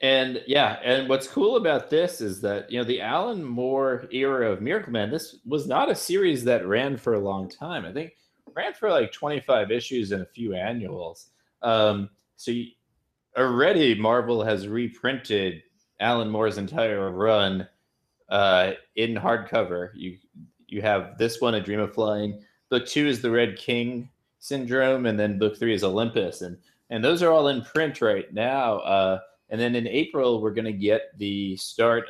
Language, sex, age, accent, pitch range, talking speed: English, male, 20-39, American, 100-130 Hz, 180 wpm